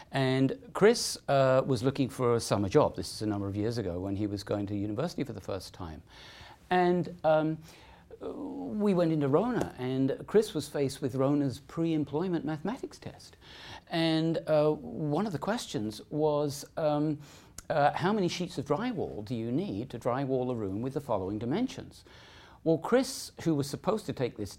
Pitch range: 125-170 Hz